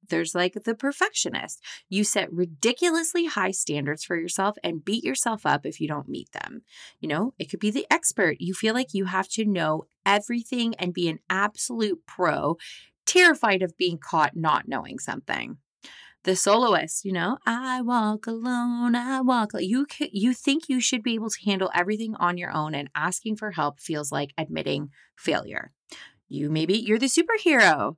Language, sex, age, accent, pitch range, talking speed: English, female, 30-49, American, 175-240 Hz, 180 wpm